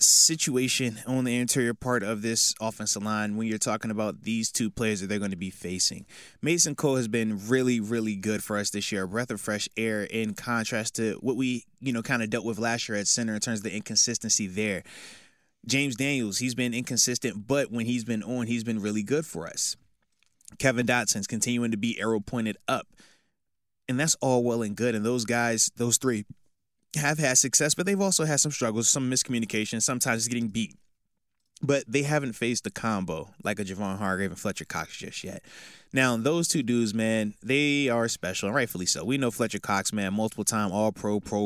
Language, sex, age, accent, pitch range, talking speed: English, male, 20-39, American, 105-125 Hz, 210 wpm